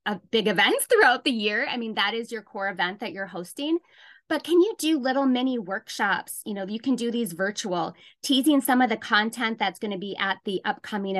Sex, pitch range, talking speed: female, 205-260 Hz, 220 wpm